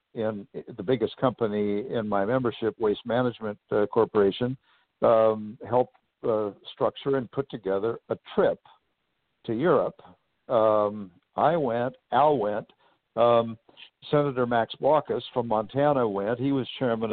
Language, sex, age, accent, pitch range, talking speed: English, male, 60-79, American, 110-135 Hz, 130 wpm